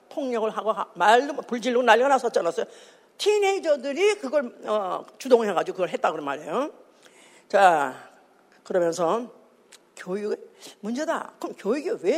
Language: Korean